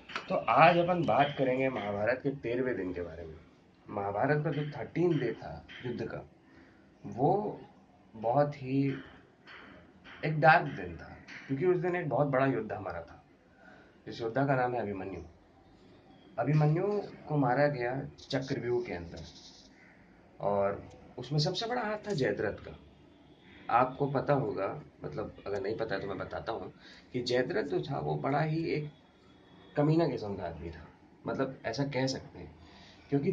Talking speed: 155 wpm